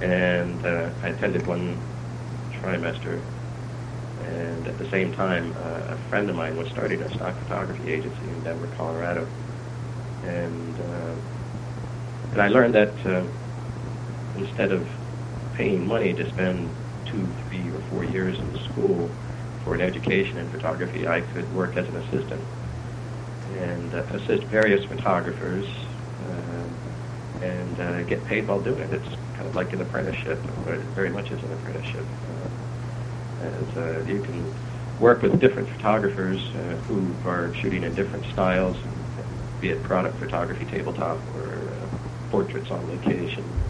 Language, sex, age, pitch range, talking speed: English, male, 40-59, 90-120 Hz, 145 wpm